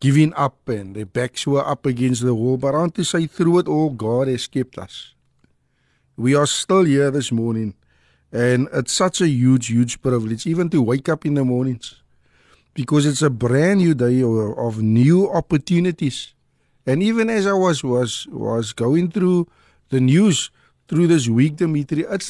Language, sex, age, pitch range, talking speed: Dutch, male, 50-69, 125-170 Hz, 185 wpm